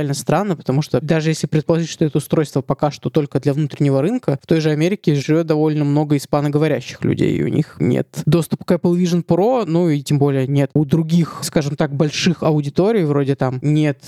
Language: Russian